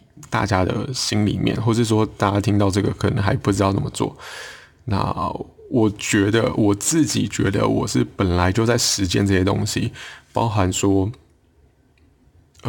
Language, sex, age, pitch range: Chinese, male, 20-39, 100-120 Hz